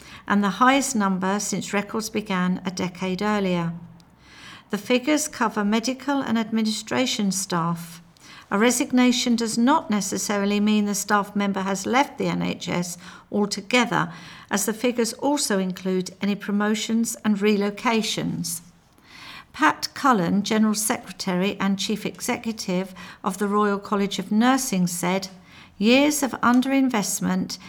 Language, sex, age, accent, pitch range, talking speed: English, female, 50-69, British, 195-235 Hz, 125 wpm